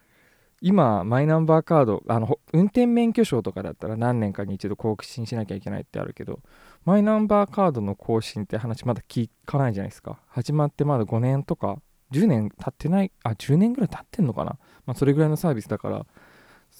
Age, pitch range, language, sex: 20-39, 105-155 Hz, Japanese, male